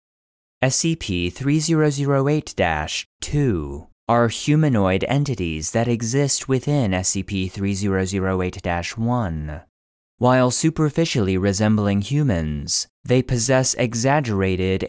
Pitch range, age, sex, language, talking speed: 90-135 Hz, 30-49, male, English, 60 wpm